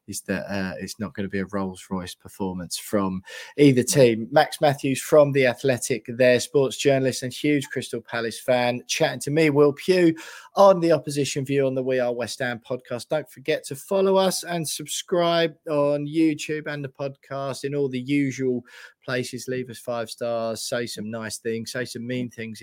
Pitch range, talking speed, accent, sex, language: 110-145 Hz, 195 wpm, British, male, English